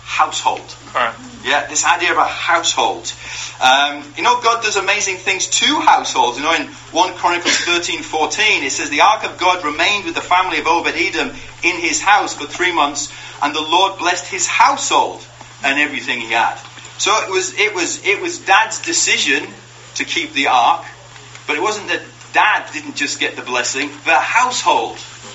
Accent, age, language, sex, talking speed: British, 30-49, English, male, 180 wpm